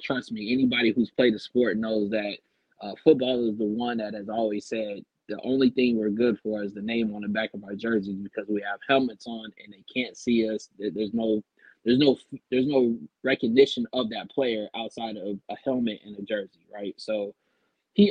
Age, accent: 20-39, American